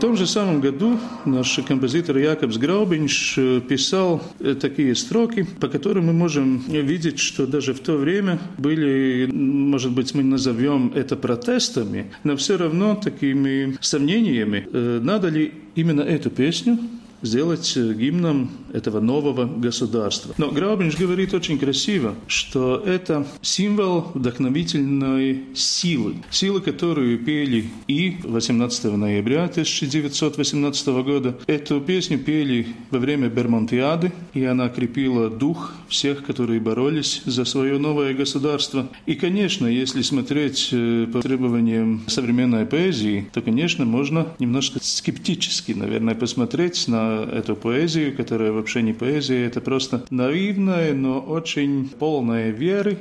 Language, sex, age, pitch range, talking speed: Russian, male, 40-59, 125-160 Hz, 120 wpm